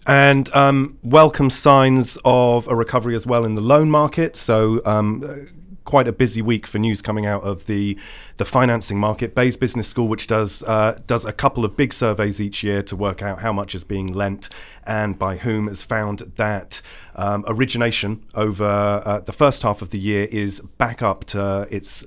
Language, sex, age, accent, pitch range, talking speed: English, male, 30-49, British, 95-120 Hz, 195 wpm